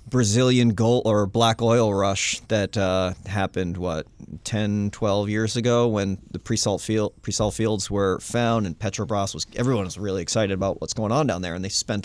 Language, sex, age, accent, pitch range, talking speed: English, male, 30-49, American, 95-115 Hz, 190 wpm